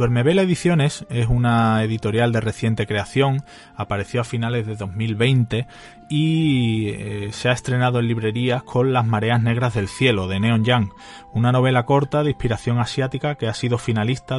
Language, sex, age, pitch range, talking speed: Spanish, male, 30-49, 110-130 Hz, 165 wpm